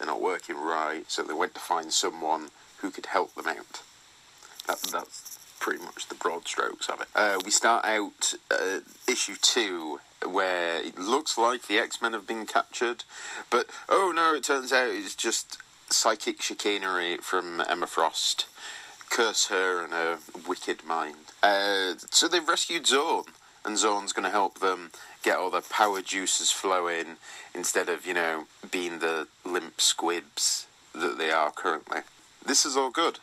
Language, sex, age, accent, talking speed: English, male, 30-49, British, 165 wpm